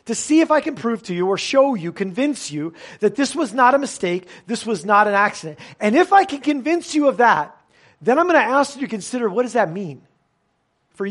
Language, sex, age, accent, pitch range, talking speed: English, male, 40-59, American, 185-255 Hz, 245 wpm